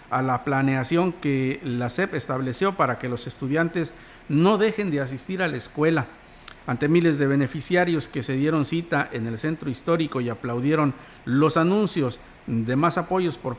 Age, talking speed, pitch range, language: 50-69, 170 wpm, 130-175 Hz, Spanish